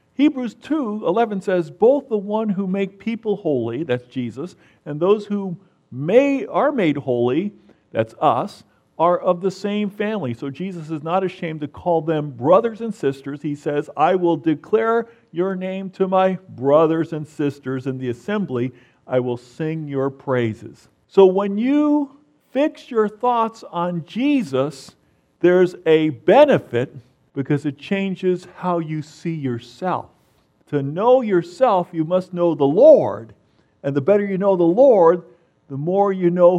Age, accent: 50-69, American